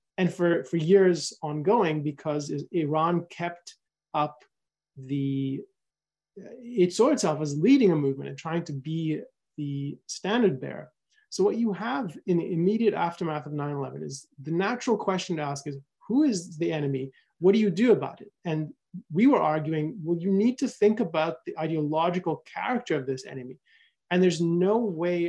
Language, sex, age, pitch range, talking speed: English, male, 30-49, 150-195 Hz, 170 wpm